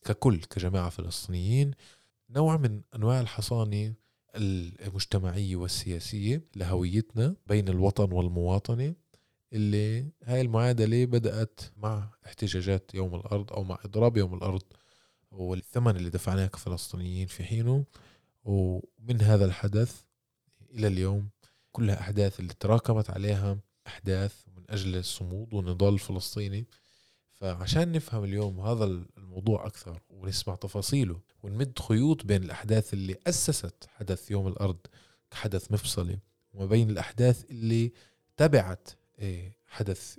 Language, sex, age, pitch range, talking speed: Arabic, male, 20-39, 95-115 Hz, 105 wpm